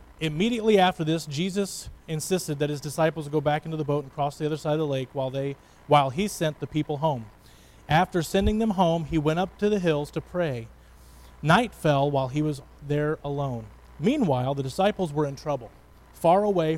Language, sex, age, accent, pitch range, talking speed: English, male, 30-49, American, 130-175 Hz, 200 wpm